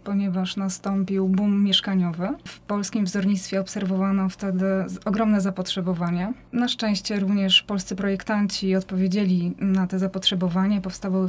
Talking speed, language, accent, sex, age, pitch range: 110 wpm, Polish, native, female, 20-39, 185-205 Hz